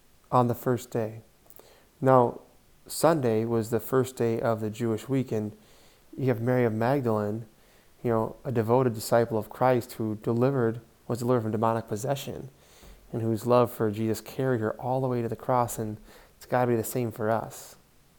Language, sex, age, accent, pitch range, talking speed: English, male, 20-39, American, 110-130 Hz, 180 wpm